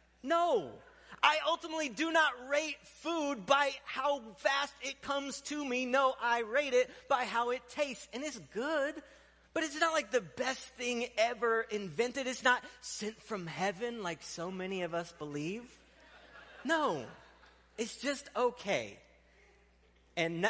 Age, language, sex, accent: 30-49, English, male, American